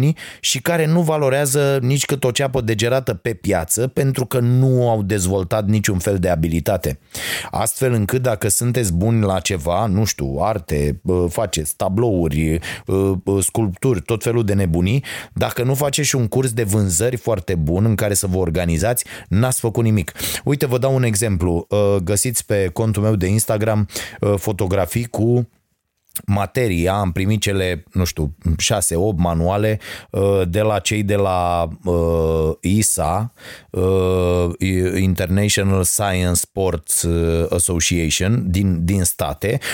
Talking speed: 130 wpm